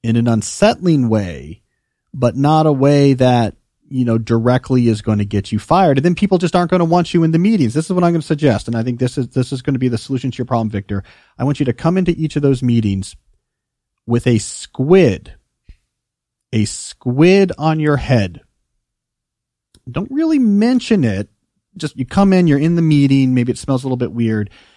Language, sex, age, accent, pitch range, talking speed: English, male, 40-59, American, 110-155 Hz, 220 wpm